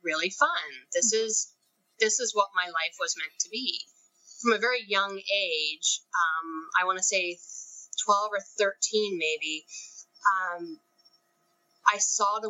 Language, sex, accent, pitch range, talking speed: English, female, American, 170-230 Hz, 150 wpm